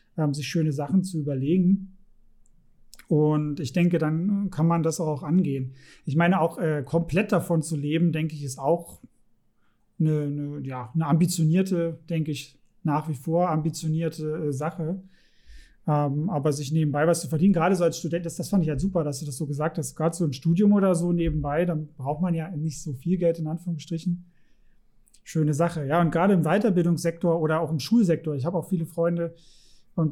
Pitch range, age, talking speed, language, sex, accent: 155-180 Hz, 30-49, 185 wpm, German, male, German